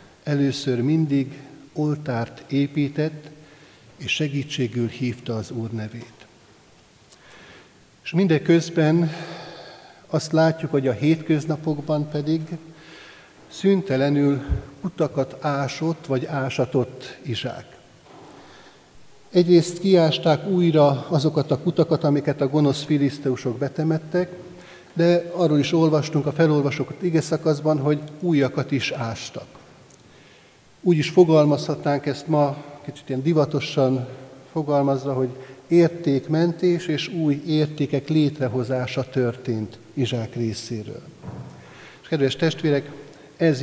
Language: Hungarian